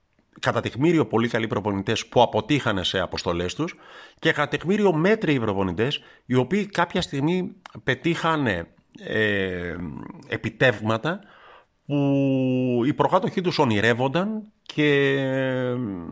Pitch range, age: 105-160 Hz, 50-69